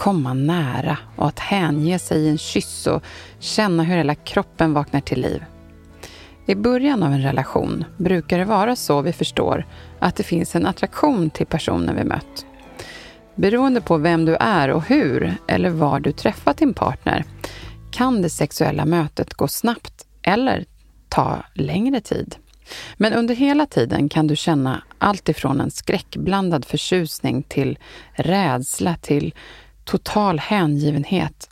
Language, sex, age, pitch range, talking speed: Swedish, female, 30-49, 150-195 Hz, 145 wpm